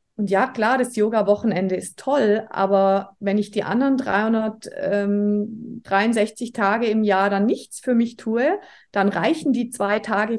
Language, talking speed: German, 150 wpm